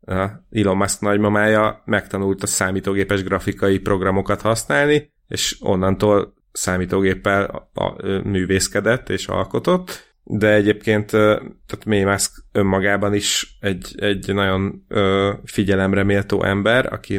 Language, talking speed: Hungarian, 115 wpm